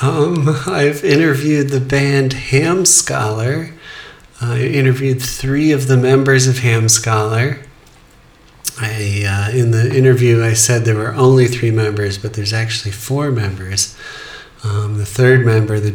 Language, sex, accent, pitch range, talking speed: English, male, American, 115-140 Hz, 145 wpm